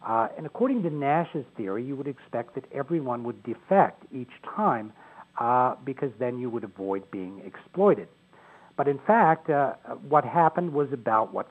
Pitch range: 120-160 Hz